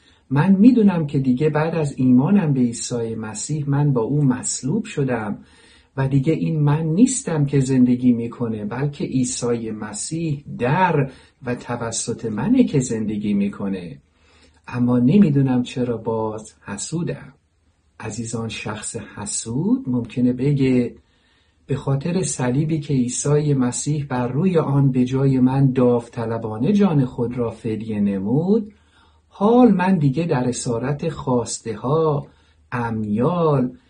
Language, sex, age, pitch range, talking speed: Persian, male, 50-69, 110-150 Hz, 120 wpm